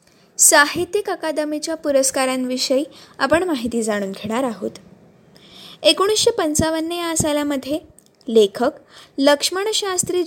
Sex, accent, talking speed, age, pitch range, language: female, native, 80 wpm, 20-39, 255-325 Hz, Marathi